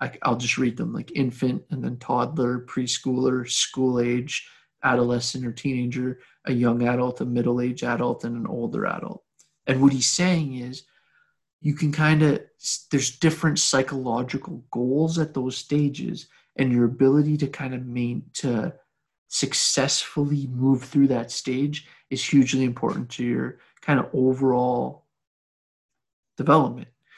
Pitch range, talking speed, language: 125-140 Hz, 140 wpm, English